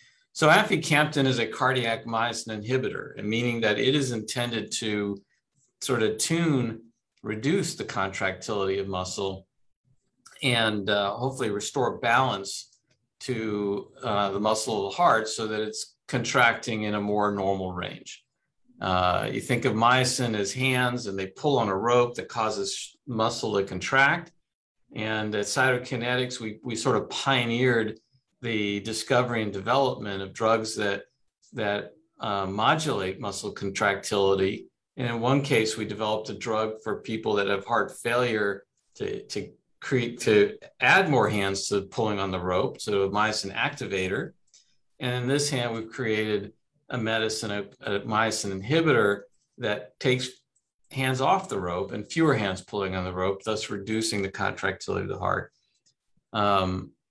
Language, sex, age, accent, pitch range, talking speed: English, male, 50-69, American, 100-125 Hz, 150 wpm